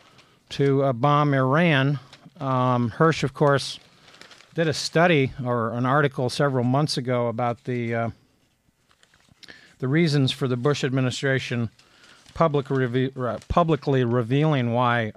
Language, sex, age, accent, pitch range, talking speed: English, male, 50-69, American, 120-145 Hz, 115 wpm